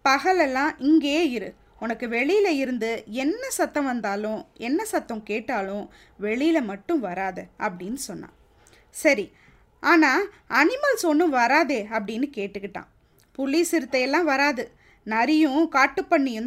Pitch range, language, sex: 240-330 Hz, Tamil, female